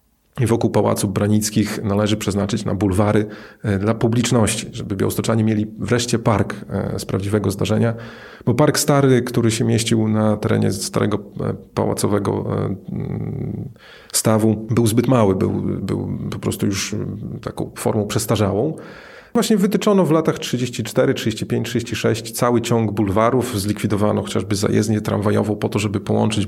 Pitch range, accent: 105-115 Hz, native